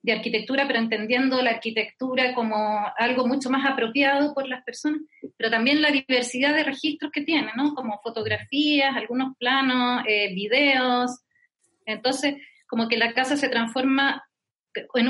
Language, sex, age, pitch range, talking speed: Spanish, female, 30-49, 235-290 Hz, 145 wpm